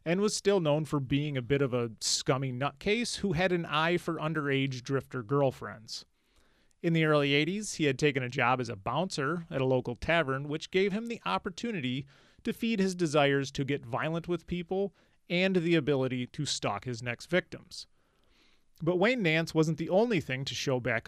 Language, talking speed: English, 195 wpm